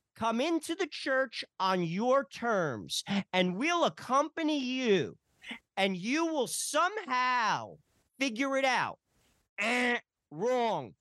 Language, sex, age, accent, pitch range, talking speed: English, male, 40-59, American, 180-275 Hz, 110 wpm